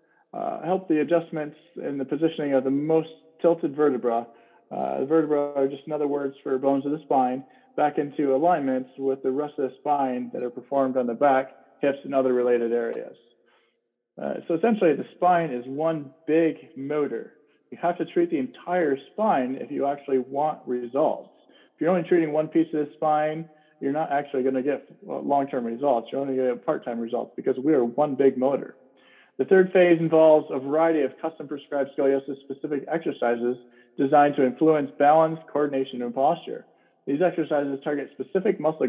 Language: English